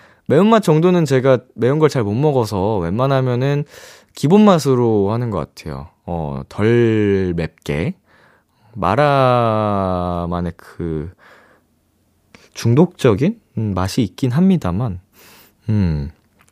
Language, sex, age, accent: Korean, male, 20-39, native